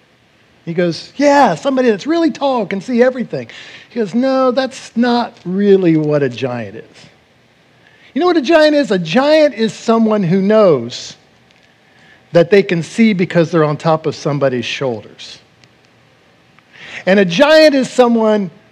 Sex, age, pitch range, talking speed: male, 50-69, 150-225 Hz, 155 wpm